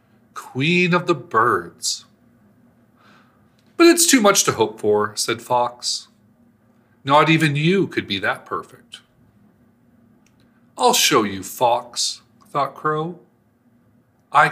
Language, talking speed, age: English, 110 wpm, 40-59